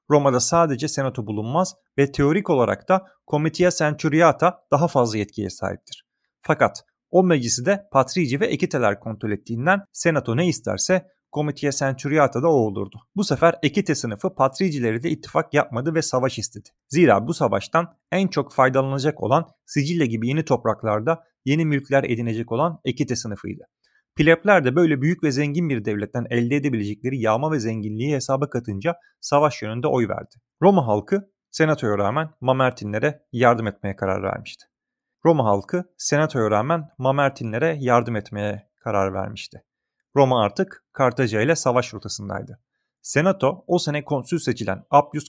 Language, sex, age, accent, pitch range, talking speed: Turkish, male, 40-59, native, 115-160 Hz, 145 wpm